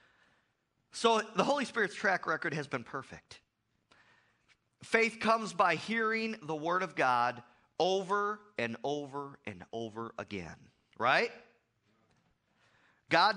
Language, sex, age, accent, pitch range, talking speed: English, male, 40-59, American, 130-190 Hz, 110 wpm